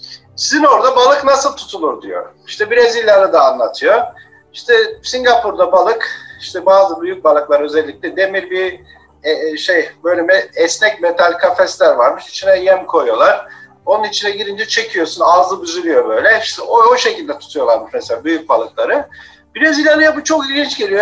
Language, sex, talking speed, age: Turkish, male, 145 wpm, 50-69